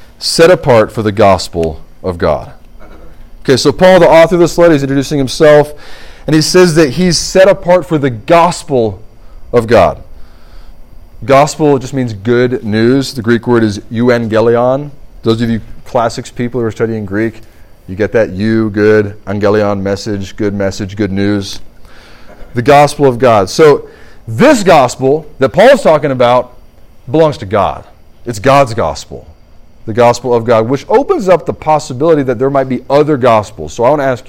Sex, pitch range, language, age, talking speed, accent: male, 105-140 Hz, English, 30-49, 170 wpm, American